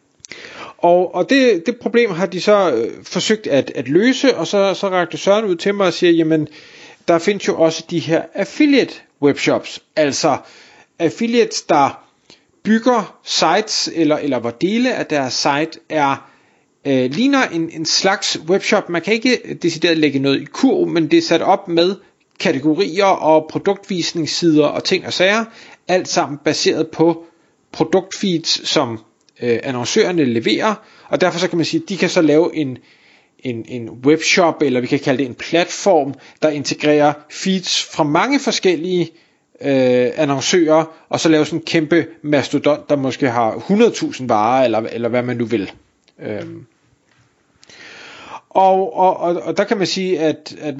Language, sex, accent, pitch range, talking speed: Danish, male, native, 150-195 Hz, 165 wpm